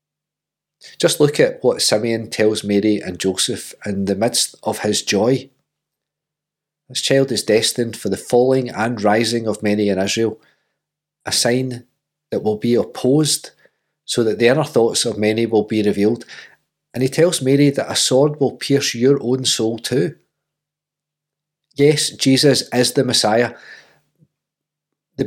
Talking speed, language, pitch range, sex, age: 150 wpm, English, 120-145 Hz, male, 40-59